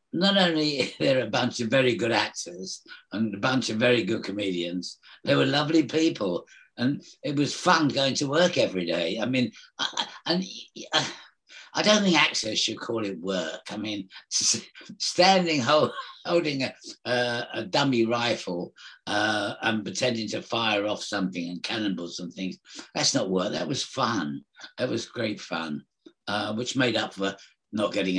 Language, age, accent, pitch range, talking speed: English, 60-79, British, 105-160 Hz, 165 wpm